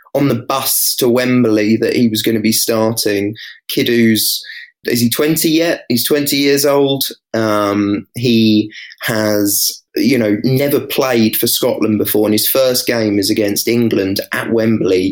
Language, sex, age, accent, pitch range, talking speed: English, male, 20-39, British, 105-115 Hz, 160 wpm